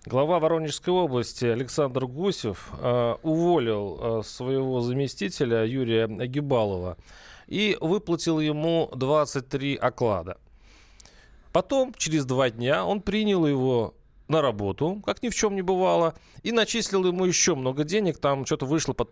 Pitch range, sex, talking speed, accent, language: 125-165 Hz, male, 130 wpm, native, Russian